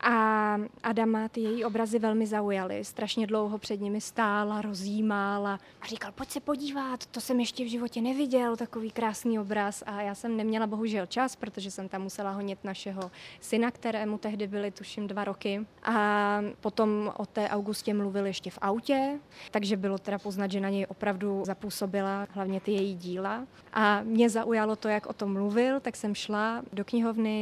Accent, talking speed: native, 175 wpm